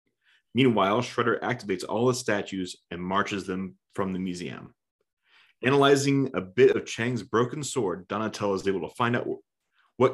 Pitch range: 95-120 Hz